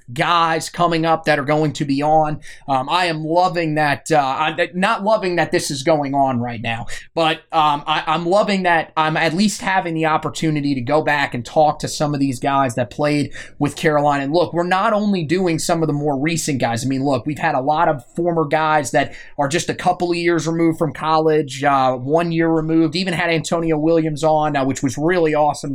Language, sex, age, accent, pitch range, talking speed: English, male, 30-49, American, 150-180 Hz, 225 wpm